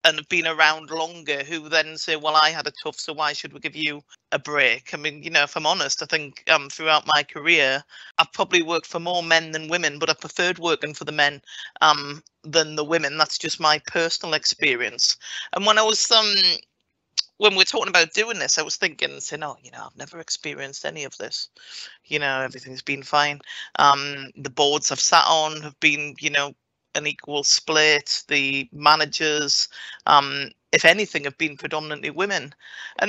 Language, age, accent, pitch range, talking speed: English, 40-59, British, 150-180 Hz, 195 wpm